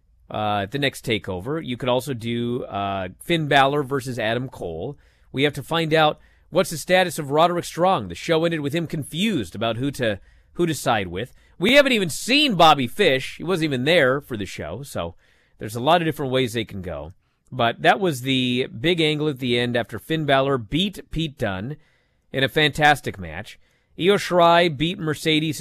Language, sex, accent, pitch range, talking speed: English, male, American, 115-160 Hz, 200 wpm